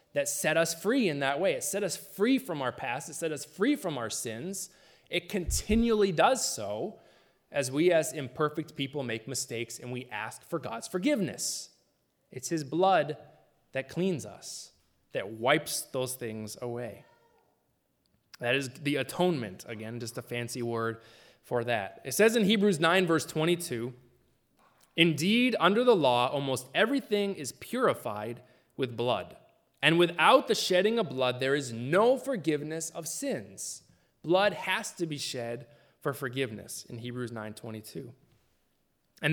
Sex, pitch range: male, 120-175 Hz